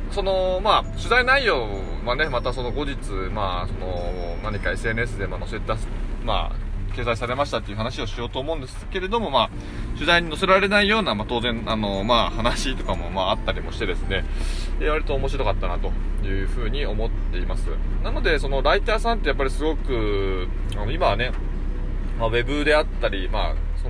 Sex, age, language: male, 20-39, Japanese